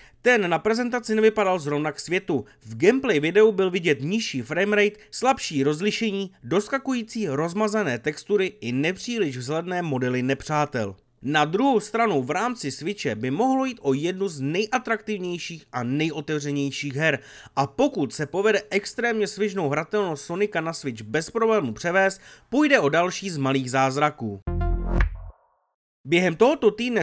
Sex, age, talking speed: male, 30-49, 140 wpm